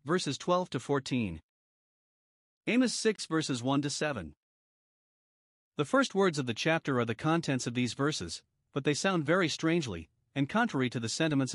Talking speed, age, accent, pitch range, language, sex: 165 wpm, 40-59, American, 125-170 Hz, English, male